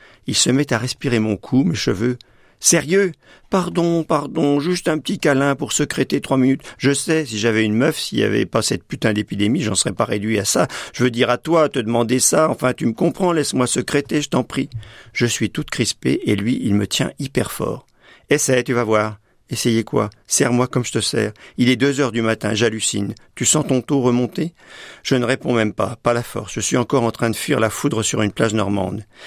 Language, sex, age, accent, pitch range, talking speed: French, male, 50-69, French, 115-150 Hz, 230 wpm